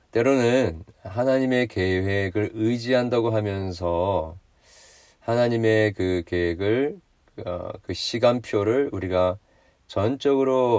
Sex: male